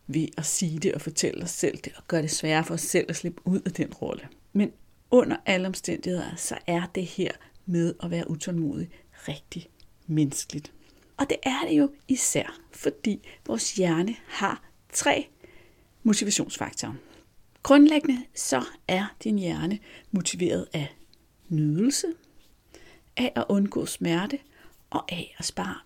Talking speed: 150 wpm